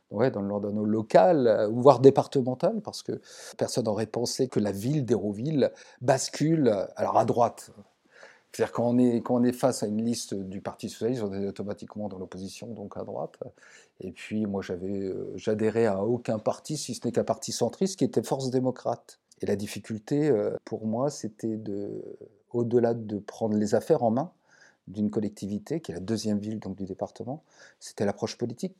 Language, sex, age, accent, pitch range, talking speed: French, male, 40-59, French, 105-125 Hz, 185 wpm